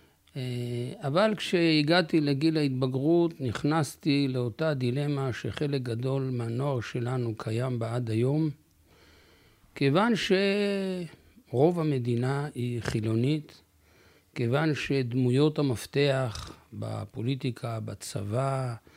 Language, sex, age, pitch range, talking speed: Hebrew, male, 60-79, 120-160 Hz, 80 wpm